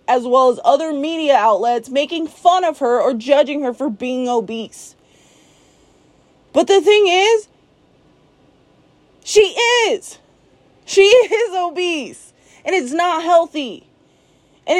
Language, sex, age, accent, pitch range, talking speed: English, female, 20-39, American, 255-340 Hz, 120 wpm